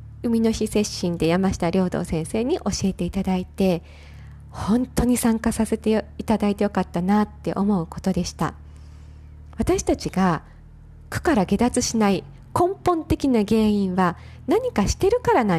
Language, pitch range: Japanese, 190-295 Hz